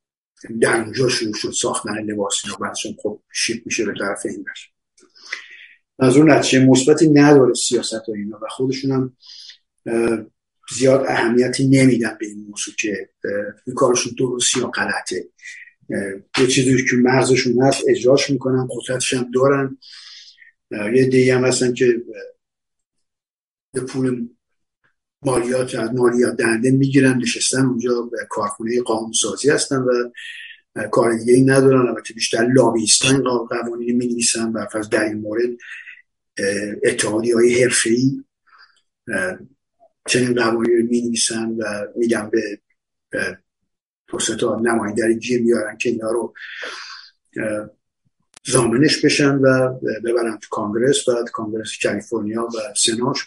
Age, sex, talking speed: 50-69, male, 125 wpm